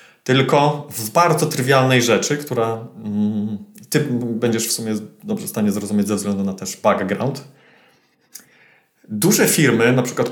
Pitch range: 125-155 Hz